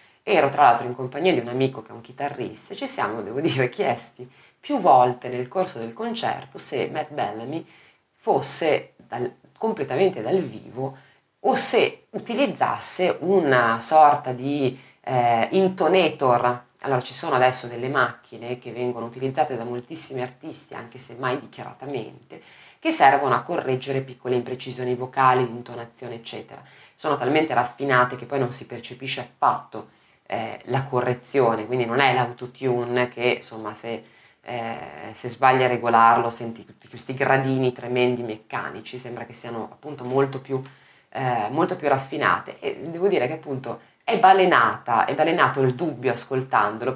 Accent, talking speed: native, 145 wpm